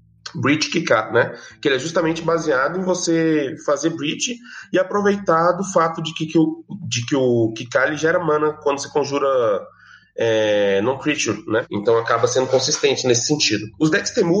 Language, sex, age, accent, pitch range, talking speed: Portuguese, male, 20-39, Brazilian, 115-170 Hz, 170 wpm